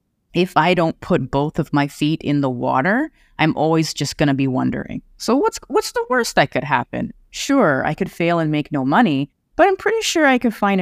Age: 30-49